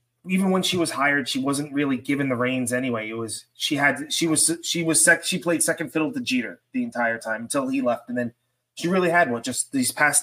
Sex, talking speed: male, 245 wpm